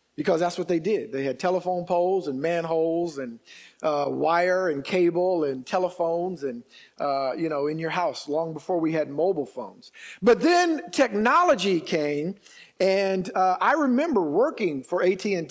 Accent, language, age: American, English, 50-69